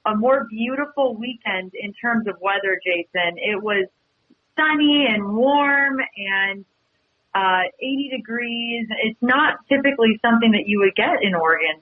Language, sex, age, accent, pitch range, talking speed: English, female, 30-49, American, 180-230 Hz, 140 wpm